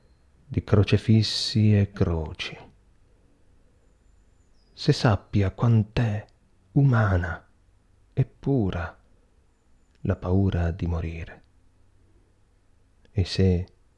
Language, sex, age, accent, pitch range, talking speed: Italian, male, 40-59, native, 75-100 Hz, 70 wpm